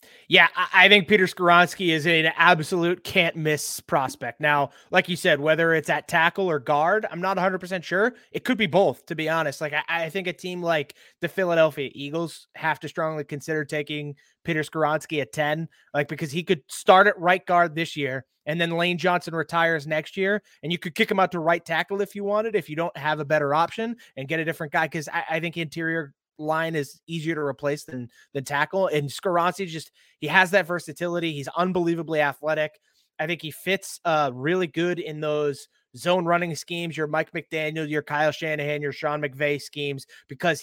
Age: 20-39